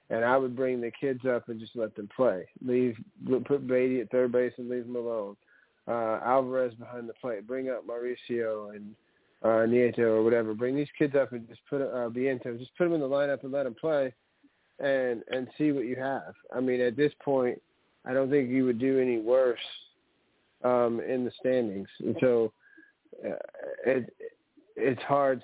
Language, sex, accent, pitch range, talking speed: English, male, American, 120-145 Hz, 195 wpm